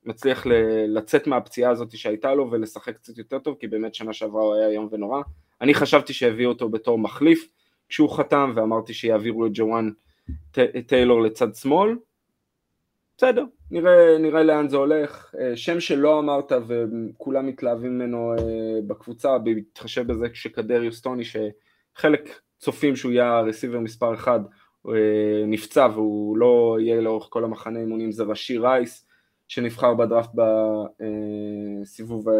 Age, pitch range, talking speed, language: 20-39, 110-135 Hz, 130 wpm, Hebrew